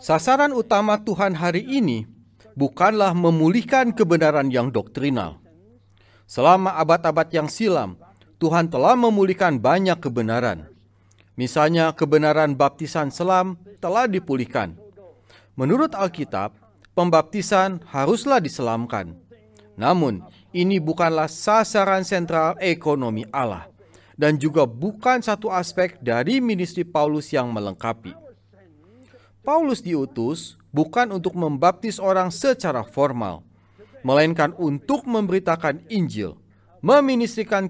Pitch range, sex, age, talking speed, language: 120-195 Hz, male, 40-59, 95 wpm, Indonesian